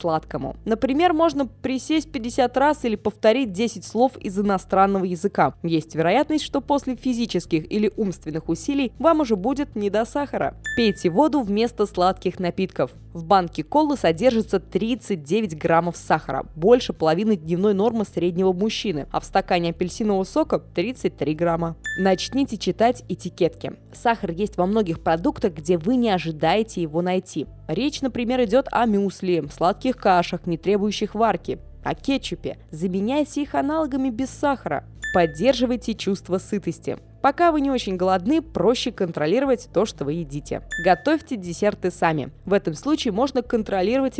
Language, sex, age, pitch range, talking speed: Russian, female, 20-39, 180-255 Hz, 140 wpm